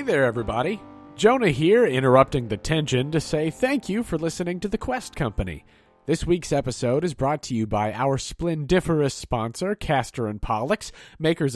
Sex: male